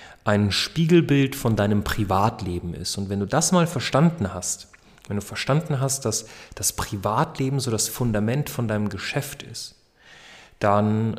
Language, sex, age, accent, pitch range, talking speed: German, male, 30-49, German, 105-145 Hz, 150 wpm